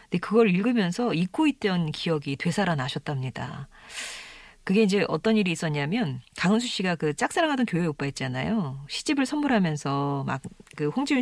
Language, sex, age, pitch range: Korean, female, 40-59, 160-230 Hz